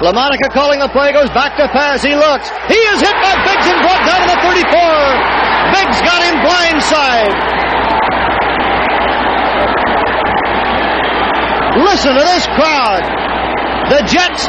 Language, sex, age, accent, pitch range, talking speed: English, male, 40-59, American, 280-345 Hz, 135 wpm